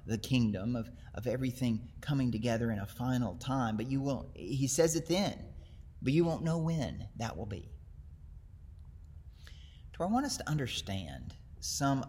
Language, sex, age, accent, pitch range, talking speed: English, male, 30-49, American, 85-125 Hz, 165 wpm